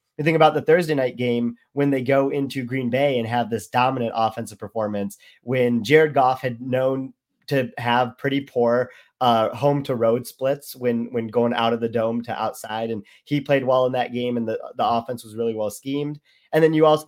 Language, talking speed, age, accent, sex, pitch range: English, 215 wpm, 30-49, American, male, 115-135 Hz